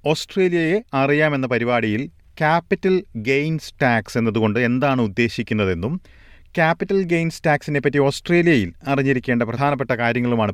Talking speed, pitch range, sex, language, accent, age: 95 wpm, 95-140 Hz, male, Malayalam, native, 40-59